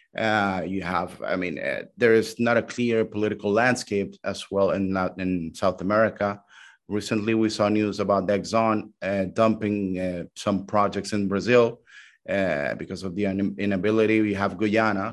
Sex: male